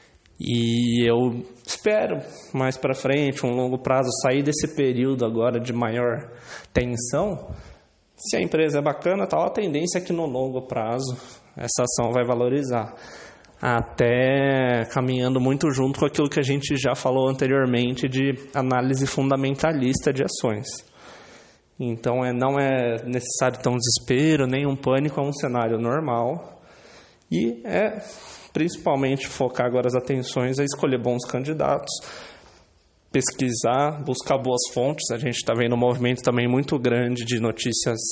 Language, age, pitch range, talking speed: Portuguese, 20-39, 120-145 Hz, 145 wpm